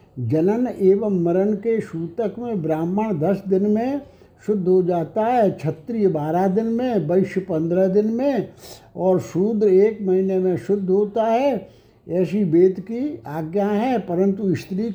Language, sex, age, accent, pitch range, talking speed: Hindi, male, 60-79, native, 175-215 Hz, 150 wpm